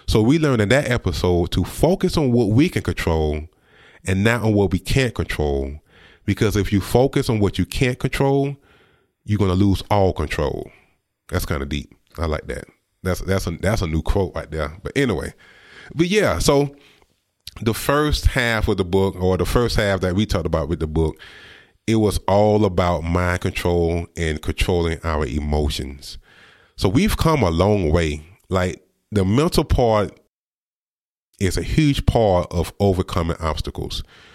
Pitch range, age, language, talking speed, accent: 85-115 Hz, 30-49, English, 175 wpm, American